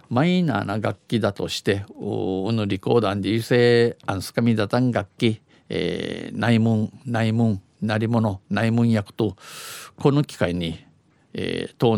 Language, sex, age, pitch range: Japanese, male, 50-69, 105-130 Hz